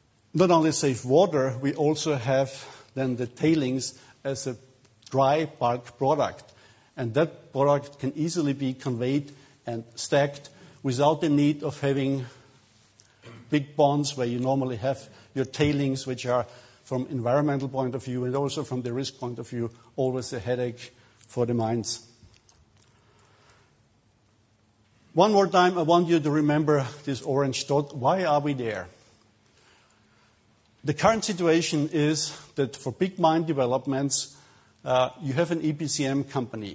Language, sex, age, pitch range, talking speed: English, male, 50-69, 125-150 Hz, 145 wpm